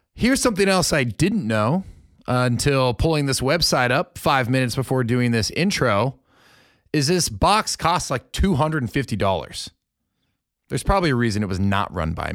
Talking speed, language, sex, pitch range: 160 wpm, English, male, 120-160 Hz